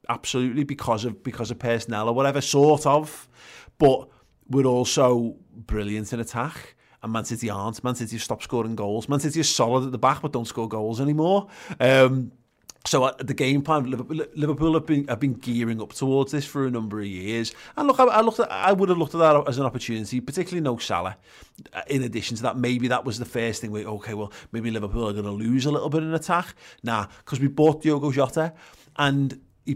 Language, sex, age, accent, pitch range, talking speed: English, male, 30-49, British, 110-145 Hz, 215 wpm